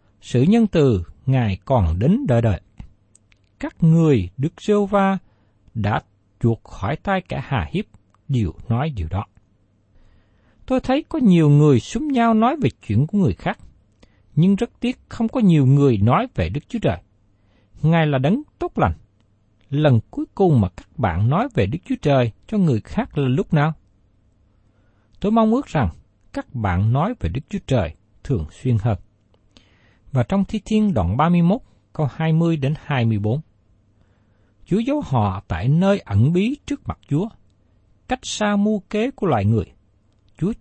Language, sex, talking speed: Vietnamese, male, 165 wpm